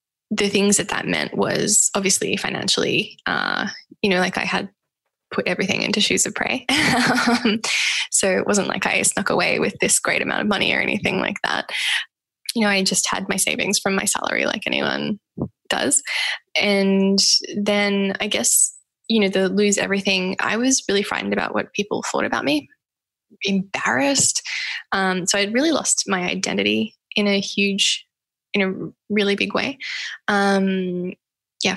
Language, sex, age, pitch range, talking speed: English, female, 10-29, 195-220 Hz, 165 wpm